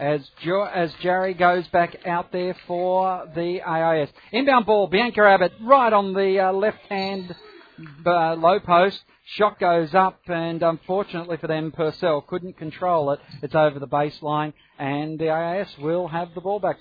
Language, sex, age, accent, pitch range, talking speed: English, male, 40-59, Australian, 160-200 Hz, 170 wpm